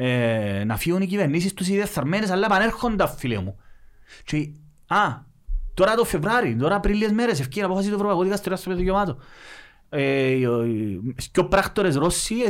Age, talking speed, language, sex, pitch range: 30-49, 80 wpm, Greek, male, 135-190 Hz